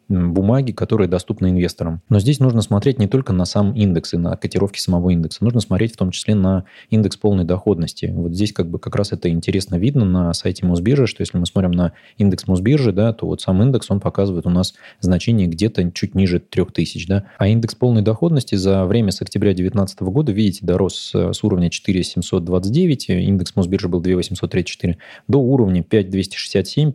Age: 20-39